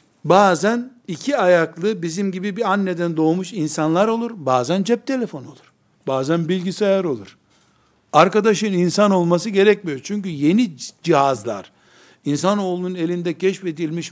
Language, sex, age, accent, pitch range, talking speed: Turkish, male, 60-79, native, 165-210 Hz, 115 wpm